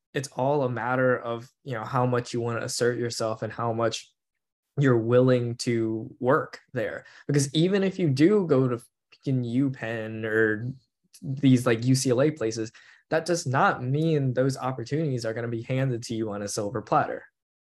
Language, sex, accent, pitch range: English, male, American, 115-135 Hz